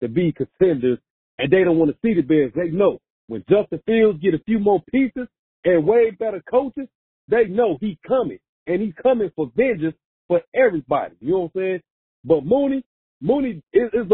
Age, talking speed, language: 40-59, 190 wpm, English